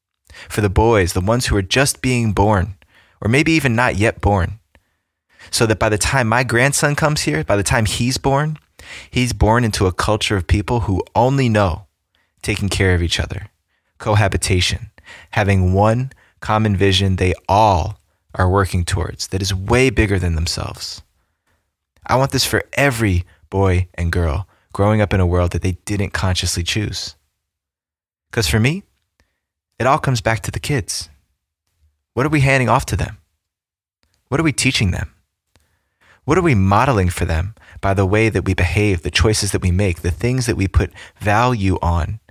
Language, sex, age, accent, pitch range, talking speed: English, male, 20-39, American, 85-110 Hz, 175 wpm